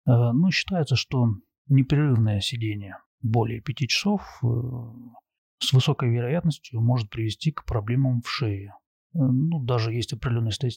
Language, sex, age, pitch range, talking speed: Russian, male, 30-49, 110-135 Hz, 115 wpm